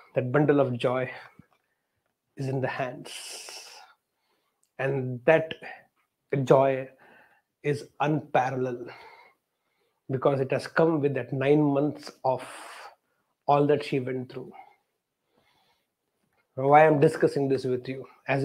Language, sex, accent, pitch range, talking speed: English, male, Indian, 135-150 Hz, 115 wpm